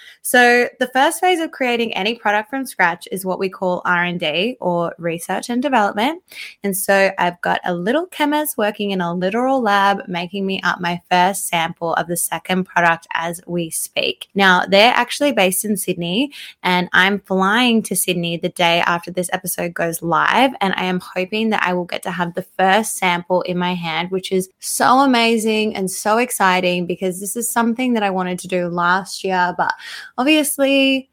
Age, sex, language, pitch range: 20-39, female, English, 180-225 Hz